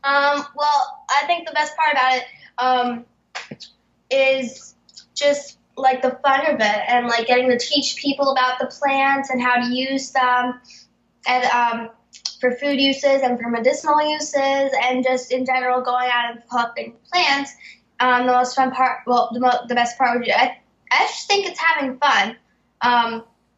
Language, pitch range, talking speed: English, 235-270 Hz, 180 wpm